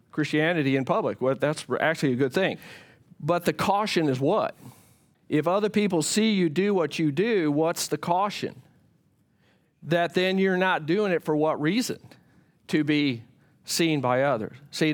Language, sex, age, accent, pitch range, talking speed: English, male, 50-69, American, 155-190 Hz, 170 wpm